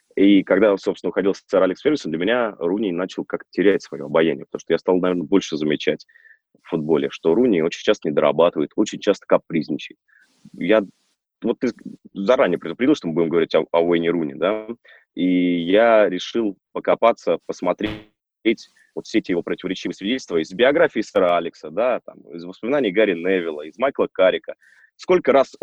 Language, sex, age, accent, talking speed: Russian, male, 20-39, native, 170 wpm